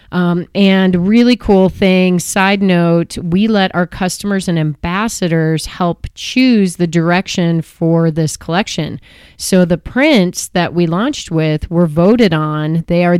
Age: 30-49